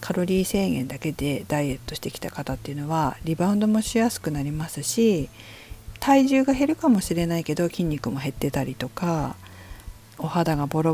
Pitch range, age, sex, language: 135-210 Hz, 50-69, female, Japanese